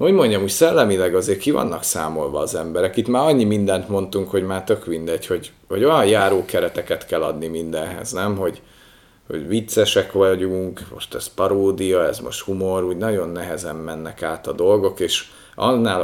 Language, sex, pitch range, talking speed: Hungarian, male, 85-110 Hz, 170 wpm